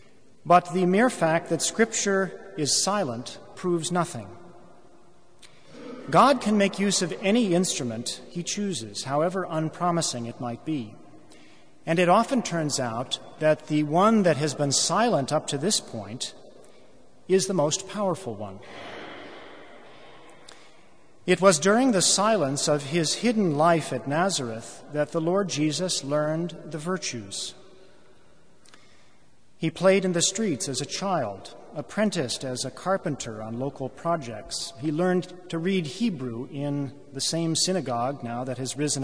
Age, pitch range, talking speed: 40-59, 135-185 Hz, 140 wpm